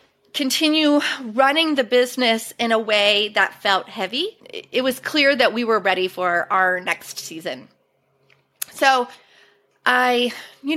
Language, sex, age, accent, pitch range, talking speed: English, female, 30-49, American, 195-250 Hz, 135 wpm